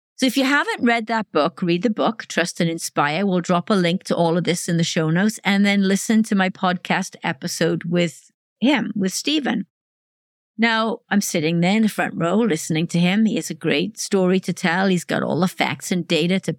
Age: 50-69